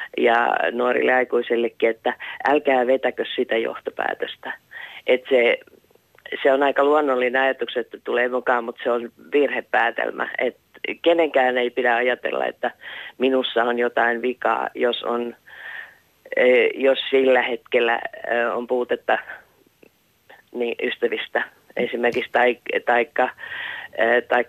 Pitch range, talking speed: 120-150 Hz, 115 wpm